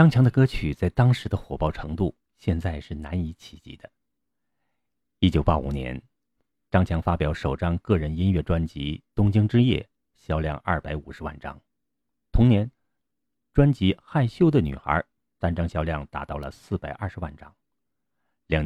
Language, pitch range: Chinese, 75-105 Hz